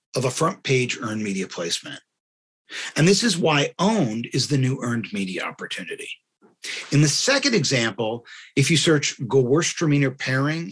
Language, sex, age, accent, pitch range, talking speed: English, male, 40-59, American, 120-150 Hz, 150 wpm